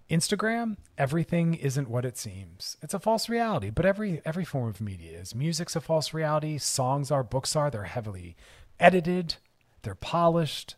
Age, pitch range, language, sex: 40-59, 105-165 Hz, English, male